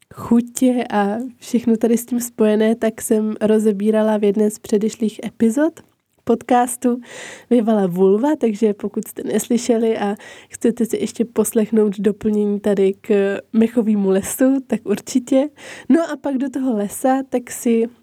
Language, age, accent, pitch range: Czech, 20-39, native, 205-235 Hz